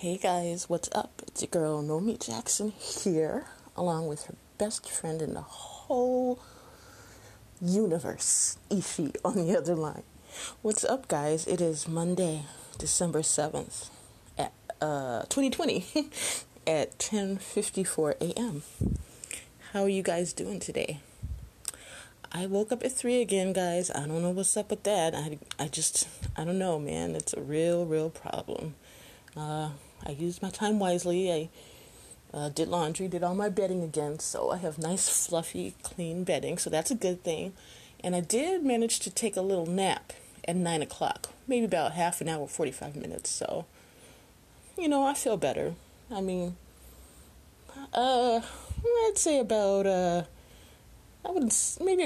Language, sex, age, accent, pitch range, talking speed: English, female, 30-49, American, 155-210 Hz, 150 wpm